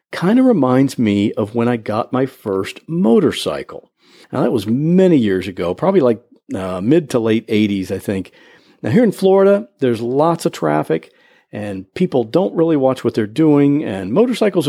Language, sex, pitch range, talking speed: English, male, 110-175 Hz, 180 wpm